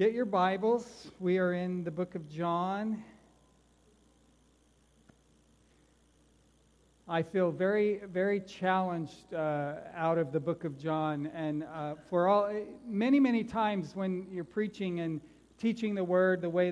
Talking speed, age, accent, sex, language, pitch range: 135 wpm, 50-69, American, male, English, 165-195 Hz